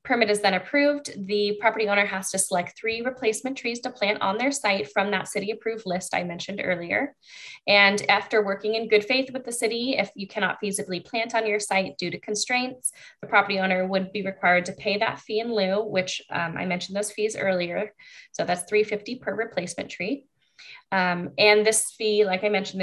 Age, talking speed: 10-29, 205 wpm